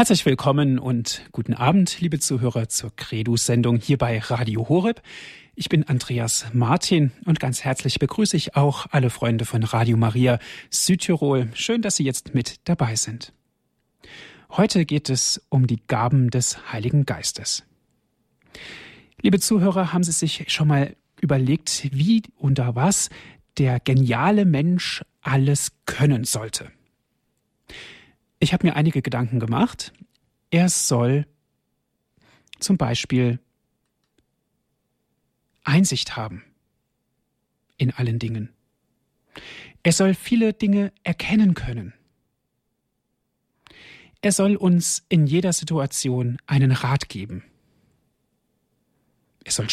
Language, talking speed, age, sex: German, 115 wpm, 40-59, male